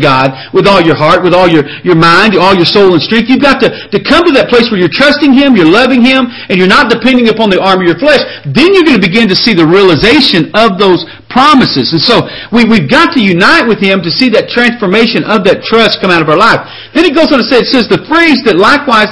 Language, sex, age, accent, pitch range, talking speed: English, male, 50-69, American, 185-250 Hz, 265 wpm